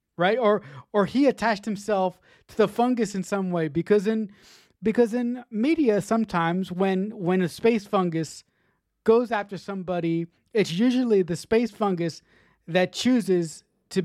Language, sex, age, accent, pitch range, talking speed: English, male, 30-49, American, 170-210 Hz, 145 wpm